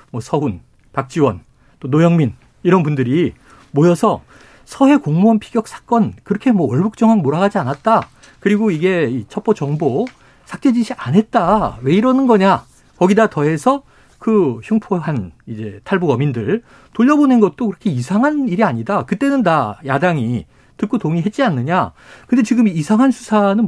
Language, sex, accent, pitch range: Korean, male, native, 150-220 Hz